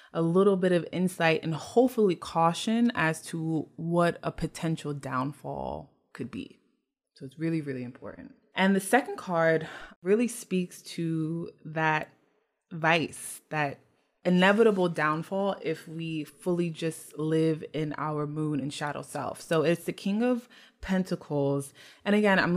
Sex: female